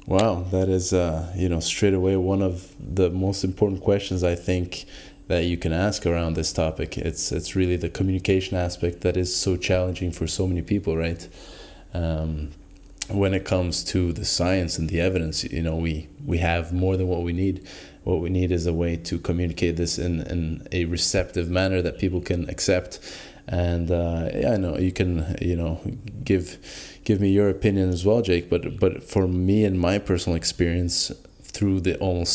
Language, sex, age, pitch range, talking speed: English, male, 20-39, 85-95 Hz, 190 wpm